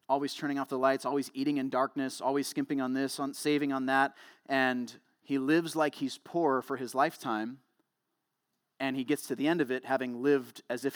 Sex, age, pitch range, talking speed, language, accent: male, 30-49, 125-145 Hz, 205 wpm, English, American